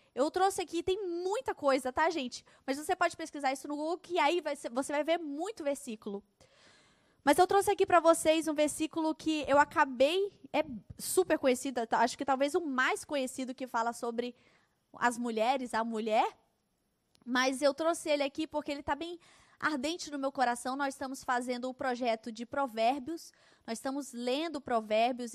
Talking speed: 180 wpm